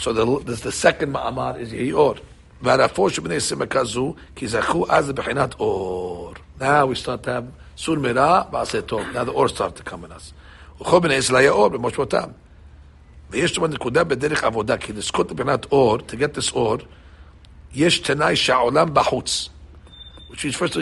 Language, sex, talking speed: English, male, 110 wpm